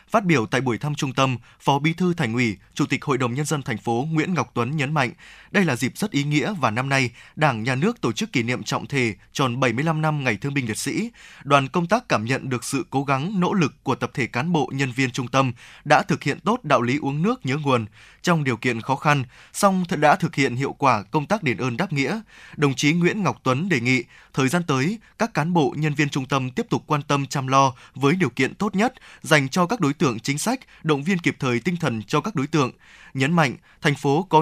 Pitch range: 130-170 Hz